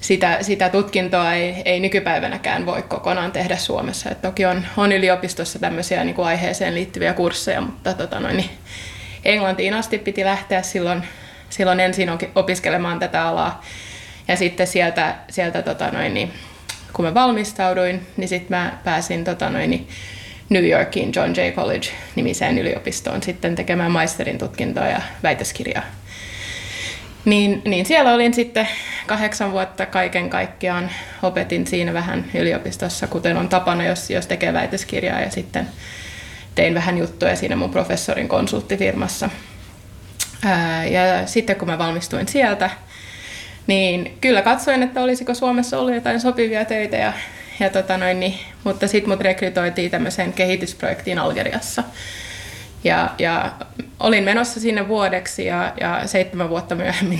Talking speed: 135 wpm